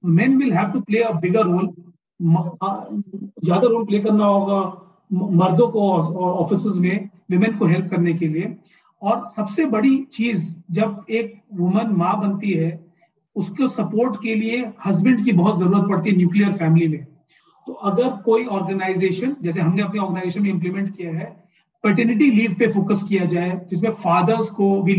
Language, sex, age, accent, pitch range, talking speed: Hindi, male, 40-59, native, 175-215 Hz, 145 wpm